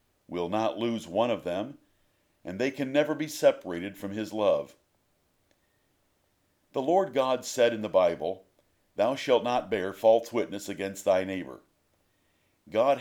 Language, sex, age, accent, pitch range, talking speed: English, male, 50-69, American, 105-140 Hz, 150 wpm